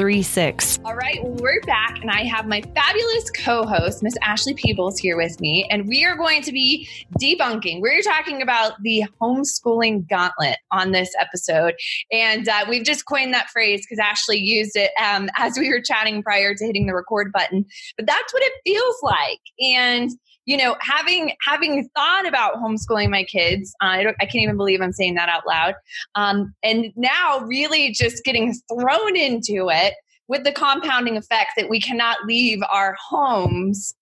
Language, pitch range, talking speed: English, 210-285 Hz, 180 wpm